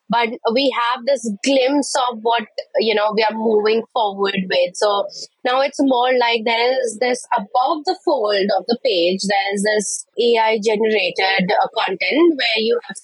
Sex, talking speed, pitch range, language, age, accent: female, 160 wpm, 210-280 Hz, English, 20-39, Indian